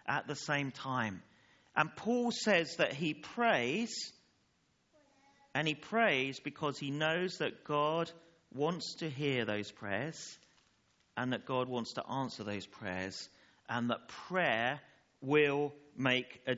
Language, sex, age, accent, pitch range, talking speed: English, male, 40-59, British, 130-215 Hz, 135 wpm